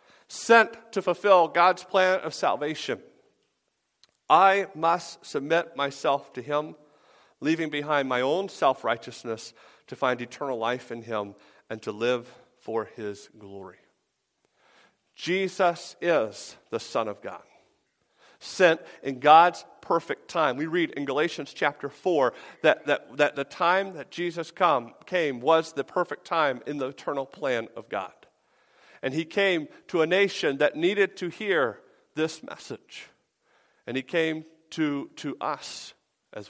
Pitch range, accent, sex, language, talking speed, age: 140-190 Hz, American, male, English, 135 wpm, 50-69